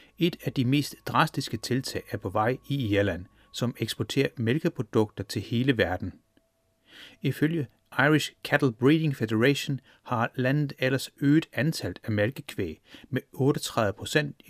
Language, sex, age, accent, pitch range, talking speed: Danish, male, 30-49, native, 110-140 Hz, 130 wpm